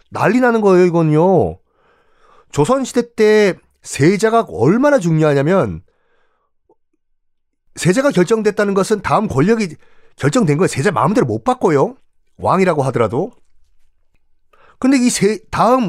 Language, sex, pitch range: Korean, male, 140-225 Hz